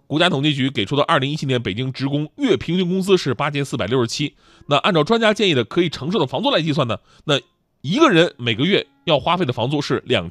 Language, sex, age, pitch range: Chinese, male, 20-39, 120-170 Hz